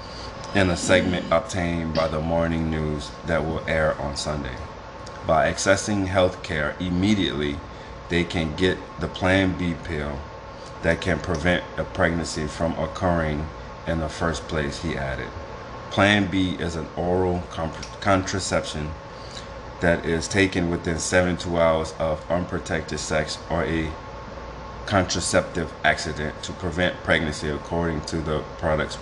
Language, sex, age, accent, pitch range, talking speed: English, male, 30-49, American, 80-90 Hz, 130 wpm